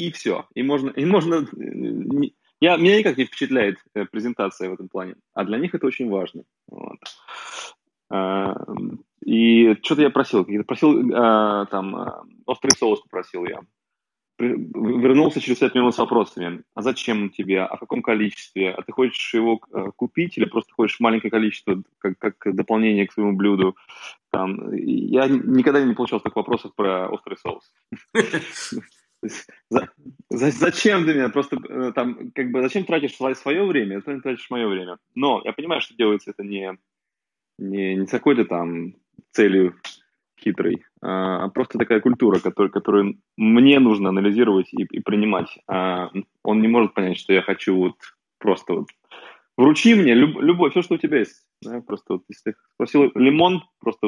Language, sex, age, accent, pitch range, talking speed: Russian, male, 20-39, native, 100-140 Hz, 165 wpm